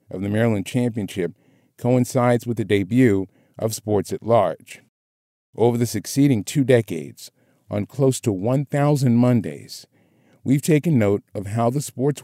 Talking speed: 140 wpm